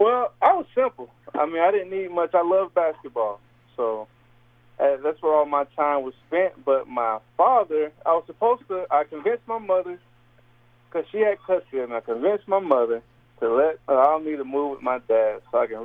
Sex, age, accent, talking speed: male, 20-39, American, 210 wpm